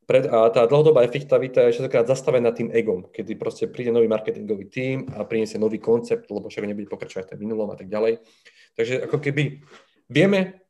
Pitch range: 105-150 Hz